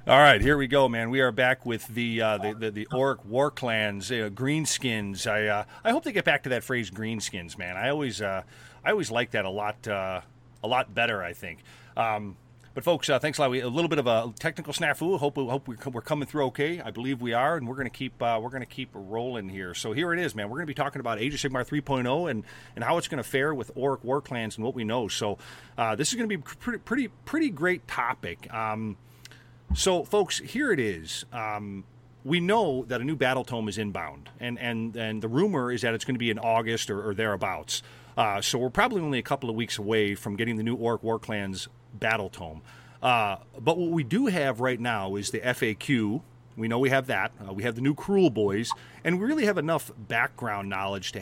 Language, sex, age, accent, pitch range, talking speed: English, male, 40-59, American, 110-140 Hz, 245 wpm